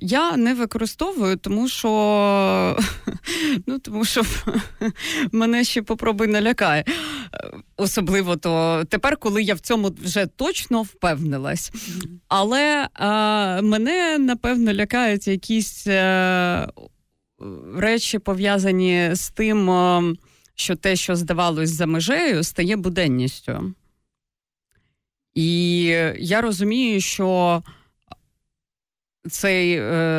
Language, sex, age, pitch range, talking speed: Ukrainian, female, 30-49, 170-220 Hz, 95 wpm